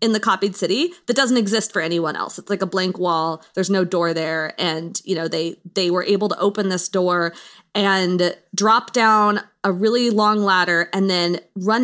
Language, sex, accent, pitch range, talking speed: English, female, American, 180-225 Hz, 205 wpm